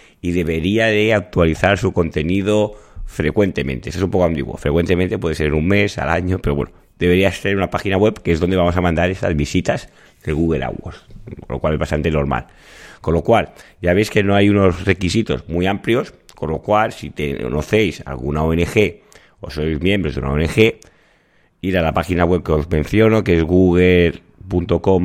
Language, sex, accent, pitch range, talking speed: Spanish, male, Spanish, 80-95 Hz, 195 wpm